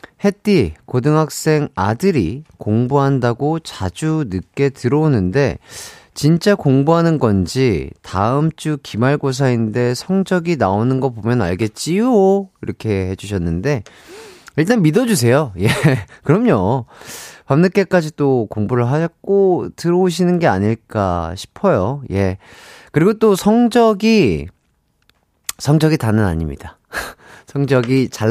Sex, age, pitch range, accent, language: male, 30-49, 115-175 Hz, native, Korean